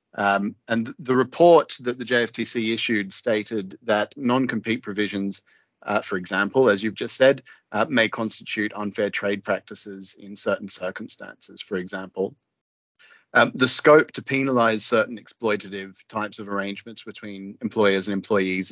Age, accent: 30-49, Australian